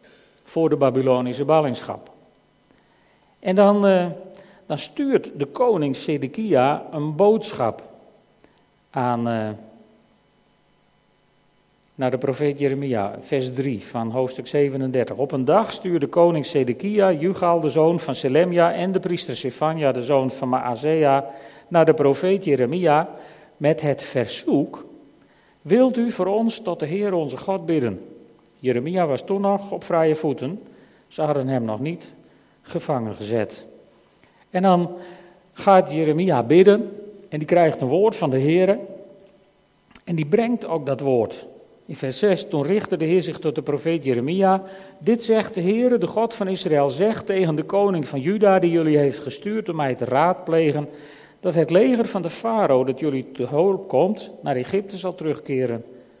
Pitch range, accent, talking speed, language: 135-195 Hz, Dutch, 155 wpm, Dutch